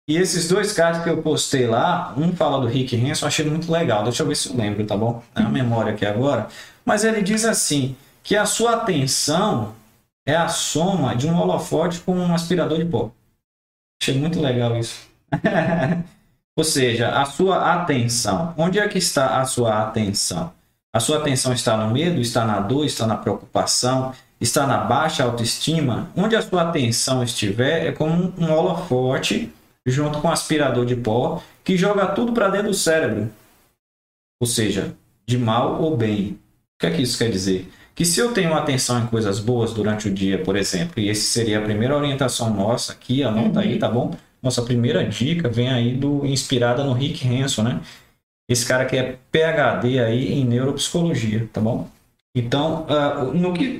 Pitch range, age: 115-160 Hz, 20-39